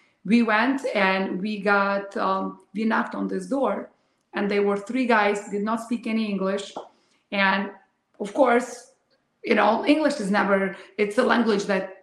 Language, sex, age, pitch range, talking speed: English, female, 30-49, 200-240 Hz, 165 wpm